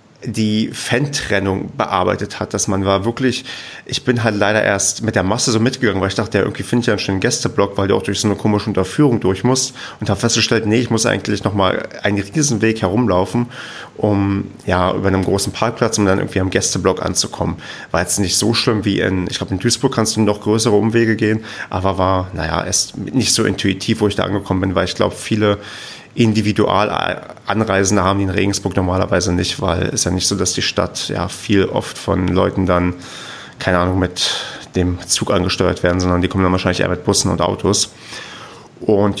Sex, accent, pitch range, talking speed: male, German, 90-110 Hz, 210 wpm